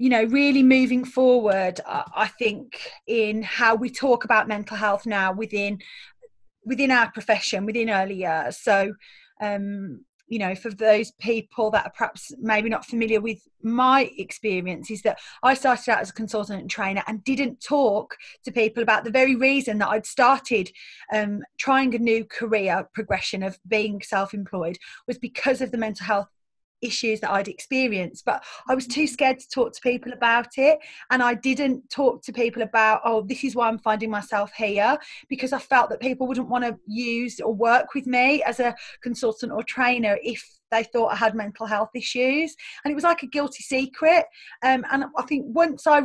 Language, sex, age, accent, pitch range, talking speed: English, female, 30-49, British, 215-260 Hz, 190 wpm